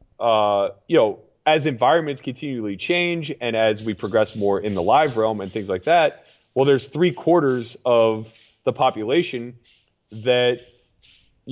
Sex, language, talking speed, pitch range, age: male, English, 150 wpm, 110-135 Hz, 20-39